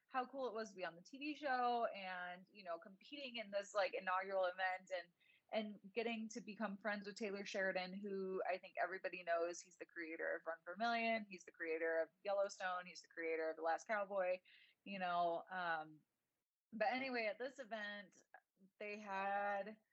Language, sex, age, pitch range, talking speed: English, female, 20-39, 175-215 Hz, 190 wpm